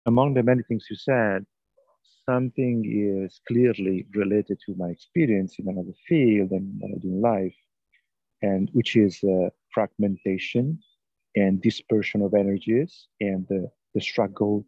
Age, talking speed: 40-59, 145 wpm